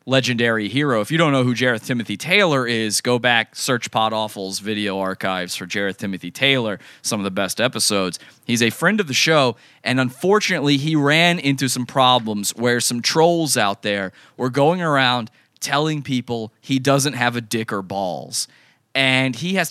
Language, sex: English, male